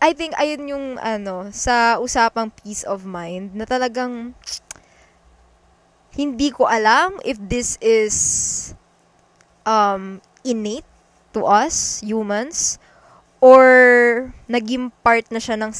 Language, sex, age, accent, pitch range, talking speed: Filipino, female, 20-39, native, 210-260 Hz, 110 wpm